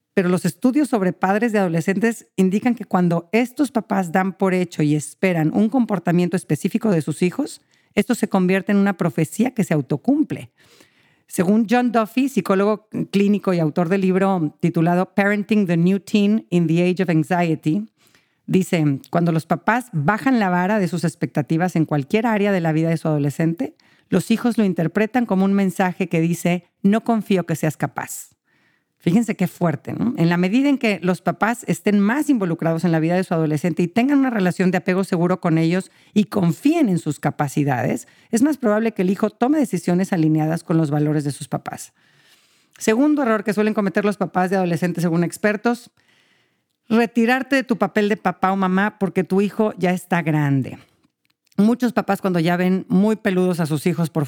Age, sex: 50-69, female